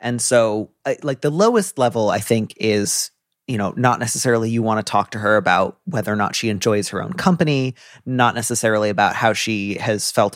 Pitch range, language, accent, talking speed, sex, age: 110-135 Hz, English, American, 205 wpm, male, 30-49